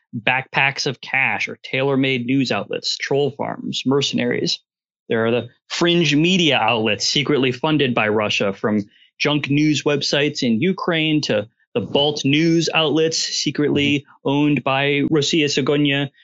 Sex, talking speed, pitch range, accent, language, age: male, 130 wpm, 135-170 Hz, American, English, 30-49